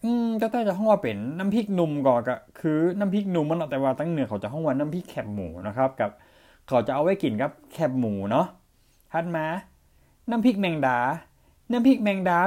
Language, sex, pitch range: Thai, male, 120-180 Hz